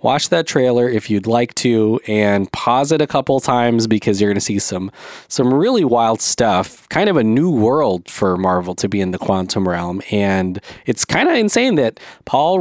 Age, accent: 30-49, American